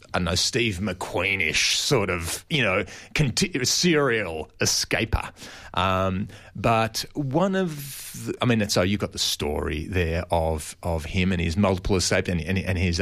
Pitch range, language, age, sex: 95-125 Hz, English, 30-49, male